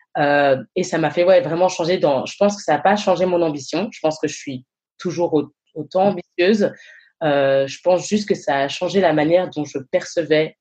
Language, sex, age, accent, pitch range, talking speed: French, female, 20-39, French, 145-180 Hz, 220 wpm